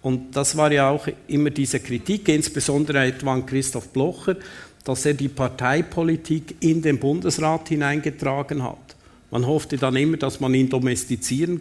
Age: 50-69